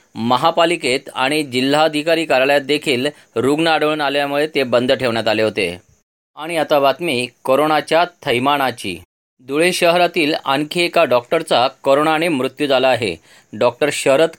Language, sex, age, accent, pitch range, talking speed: Marathi, male, 40-59, native, 135-160 Hz, 120 wpm